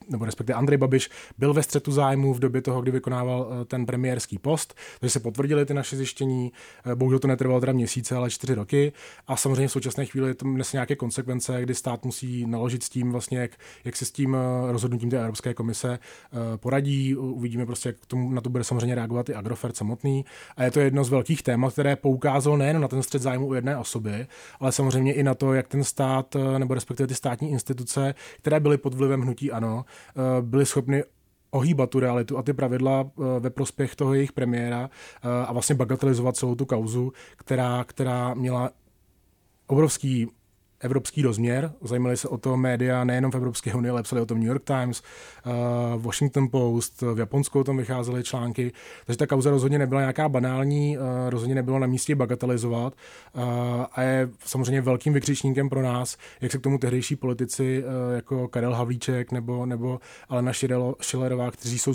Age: 20-39